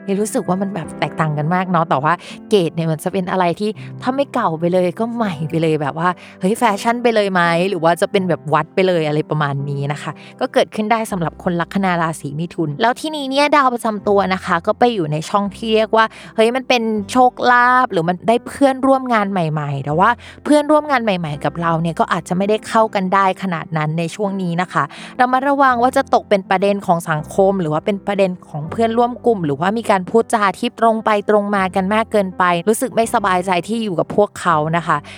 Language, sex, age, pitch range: Thai, female, 20-39, 165-225 Hz